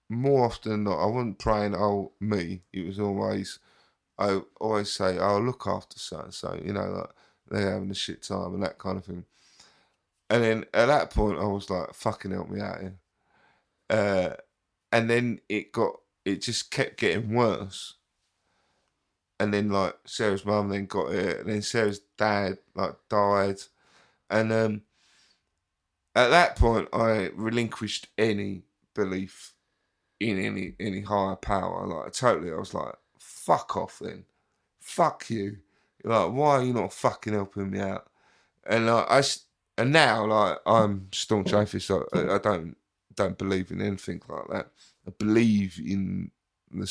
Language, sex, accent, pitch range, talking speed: English, male, British, 95-110 Hz, 165 wpm